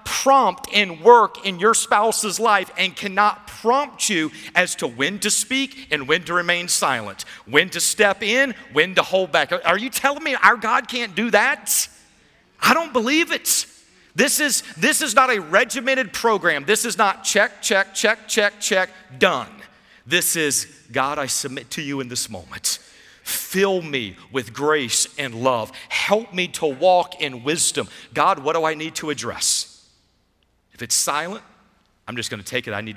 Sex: male